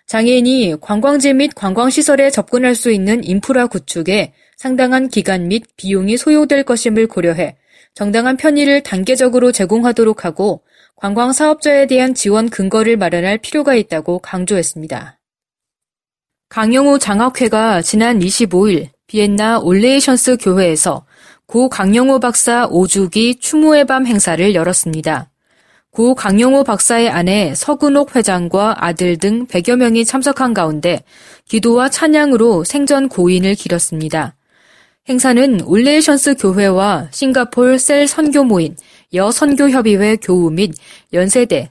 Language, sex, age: Korean, female, 20-39